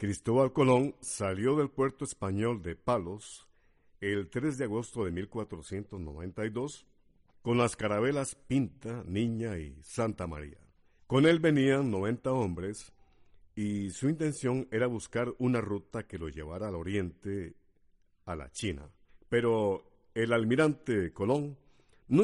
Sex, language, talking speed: male, Spanish, 125 wpm